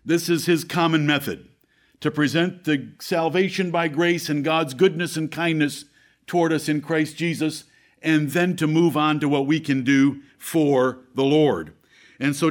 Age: 50-69